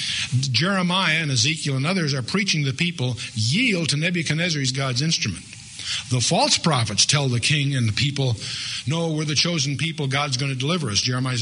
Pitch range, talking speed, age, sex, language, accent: 120-145 Hz, 185 wpm, 50-69, male, English, American